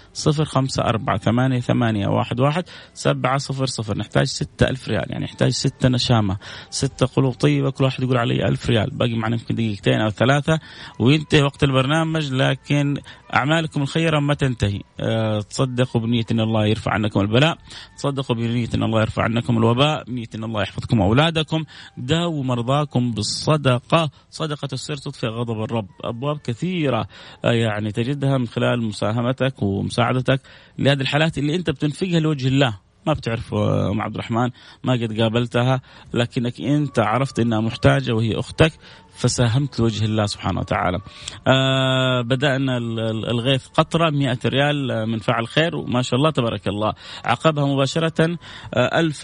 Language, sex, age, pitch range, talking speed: Arabic, male, 30-49, 110-140 Hz, 150 wpm